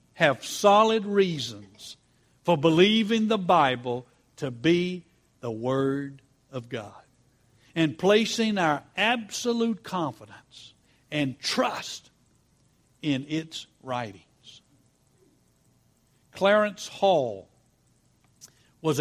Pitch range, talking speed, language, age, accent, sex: 135-185 Hz, 80 wpm, English, 60-79, American, male